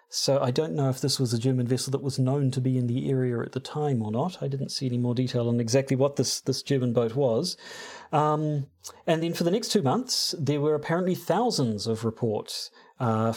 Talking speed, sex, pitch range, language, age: 235 wpm, male, 130-160 Hz, English, 40-59